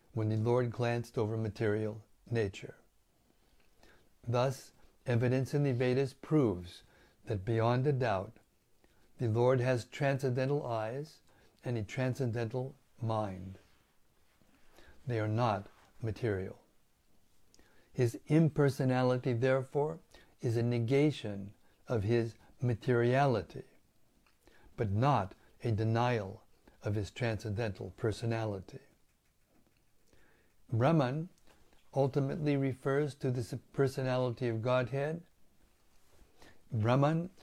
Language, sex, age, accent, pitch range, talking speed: English, male, 60-79, American, 110-135 Hz, 90 wpm